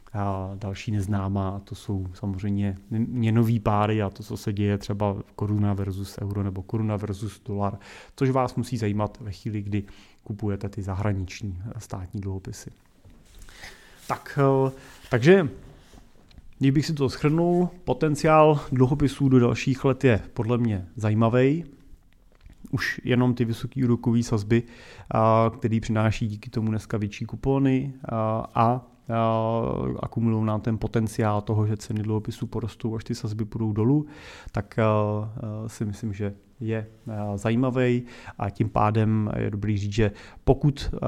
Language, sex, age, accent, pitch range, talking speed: Czech, male, 30-49, native, 105-125 Hz, 135 wpm